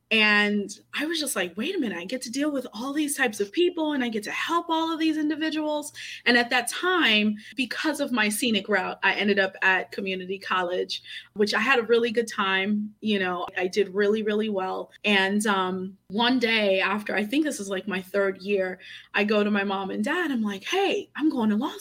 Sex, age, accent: female, 20-39, American